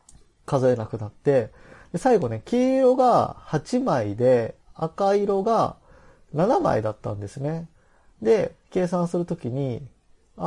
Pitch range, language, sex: 120-175 Hz, Japanese, male